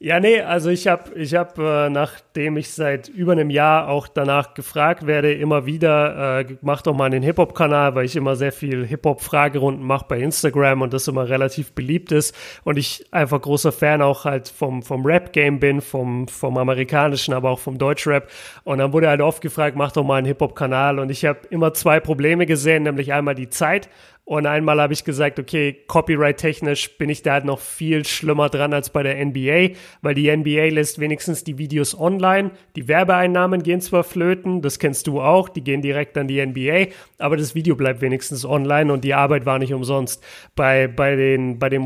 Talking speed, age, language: 200 wpm, 30-49, German